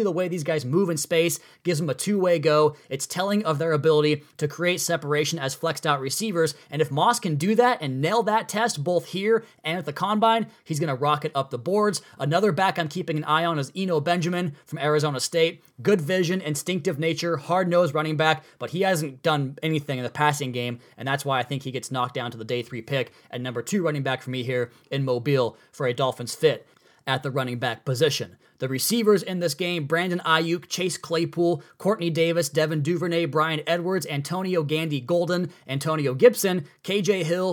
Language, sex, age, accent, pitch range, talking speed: English, male, 20-39, American, 145-180 Hz, 210 wpm